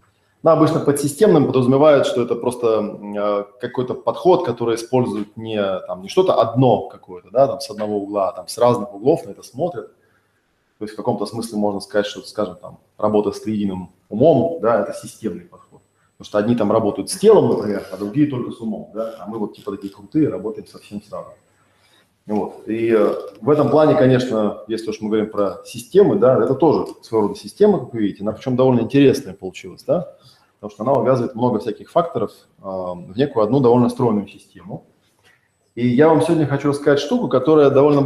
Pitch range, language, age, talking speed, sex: 105-140 Hz, Russian, 20-39, 190 wpm, male